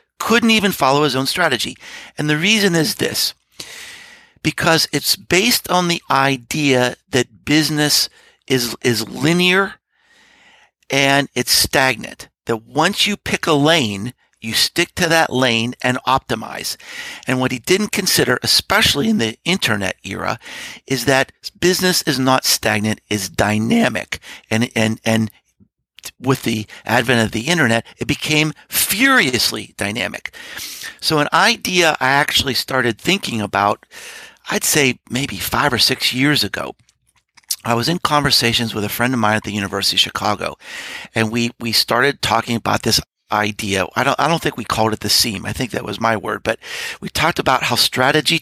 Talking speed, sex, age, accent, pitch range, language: 160 wpm, male, 50-69, American, 115-155 Hz, English